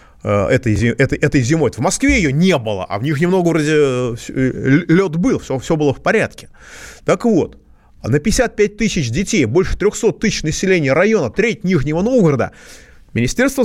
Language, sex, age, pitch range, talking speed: Russian, male, 30-49, 130-210 Hz, 150 wpm